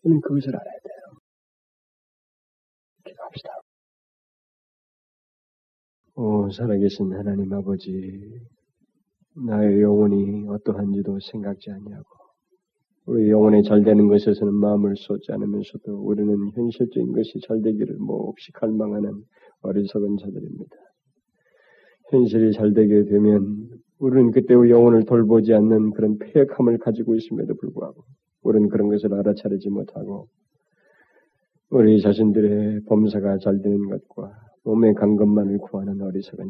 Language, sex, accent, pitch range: Korean, male, native, 105-115 Hz